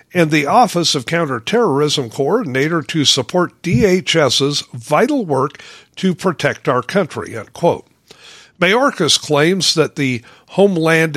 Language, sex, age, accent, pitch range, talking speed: English, male, 50-69, American, 145-185 Hz, 105 wpm